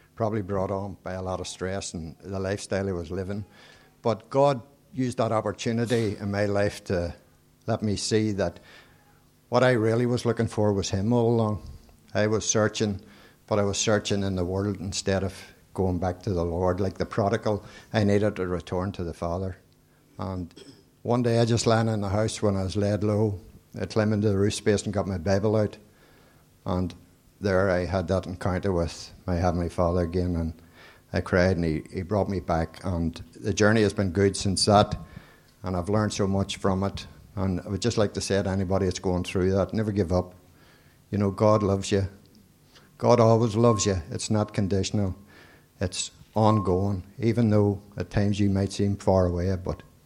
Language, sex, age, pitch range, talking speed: English, male, 60-79, 90-110 Hz, 195 wpm